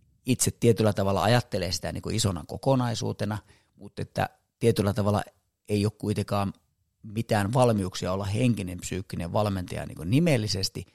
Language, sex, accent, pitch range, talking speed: Finnish, male, native, 95-115 Hz, 110 wpm